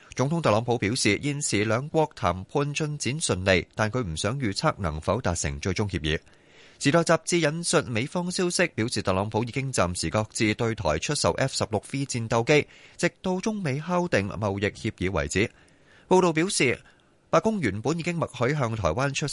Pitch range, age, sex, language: 95-150 Hz, 30-49, male, Chinese